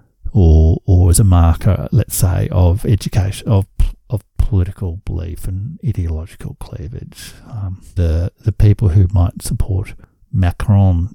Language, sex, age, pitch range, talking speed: English, male, 60-79, 90-115 Hz, 130 wpm